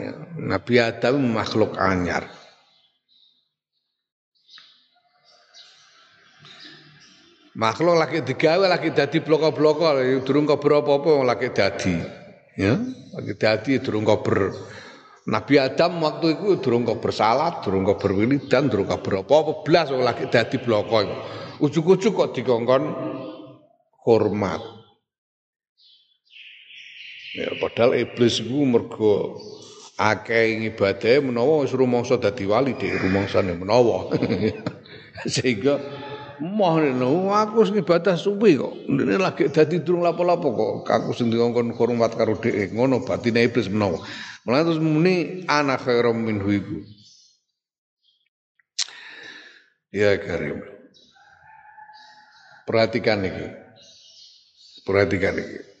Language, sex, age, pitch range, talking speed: Indonesian, male, 50-69, 115-170 Hz, 60 wpm